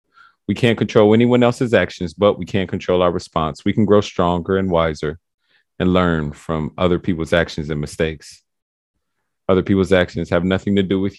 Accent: American